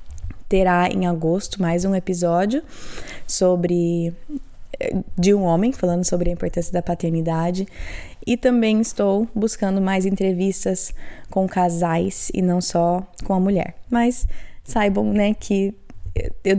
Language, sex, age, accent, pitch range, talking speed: Portuguese, female, 20-39, Brazilian, 180-210 Hz, 125 wpm